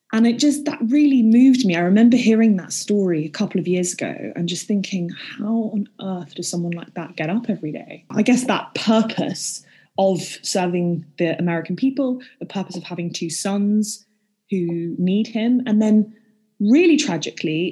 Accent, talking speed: British, 180 wpm